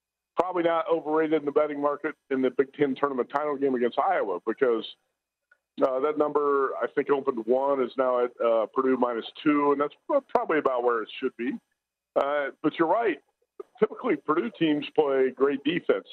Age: 50-69